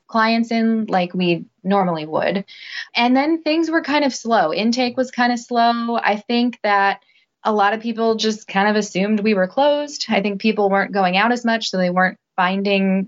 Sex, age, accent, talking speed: female, 20-39, American, 200 wpm